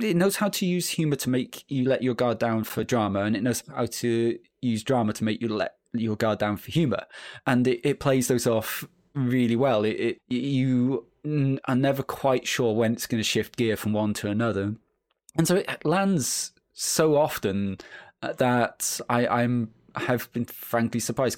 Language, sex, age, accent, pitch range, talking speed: English, male, 20-39, British, 115-130 Hz, 195 wpm